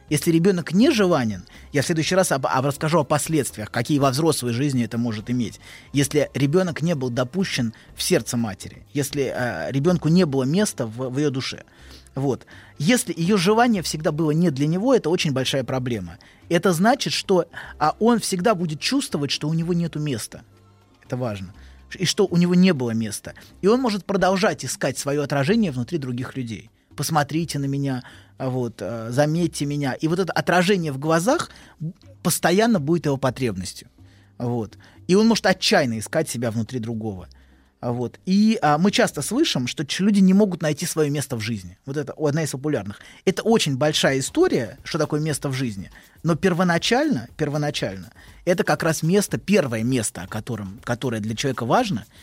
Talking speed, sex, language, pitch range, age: 170 wpm, male, Russian, 120-175 Hz, 20-39